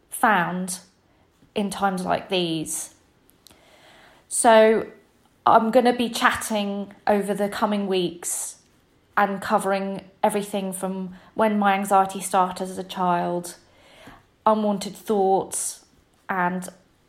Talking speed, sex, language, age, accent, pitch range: 100 wpm, female, English, 30-49, British, 185-205 Hz